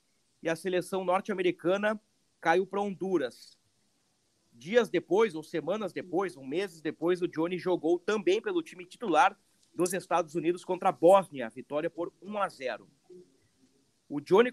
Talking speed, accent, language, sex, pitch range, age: 150 wpm, Brazilian, Portuguese, male, 175-220 Hz, 40-59